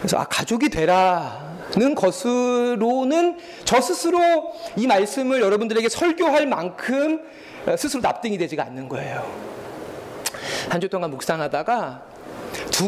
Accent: native